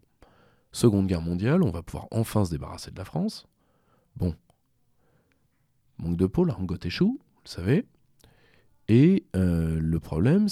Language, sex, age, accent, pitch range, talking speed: French, male, 40-59, French, 85-125 Hz, 145 wpm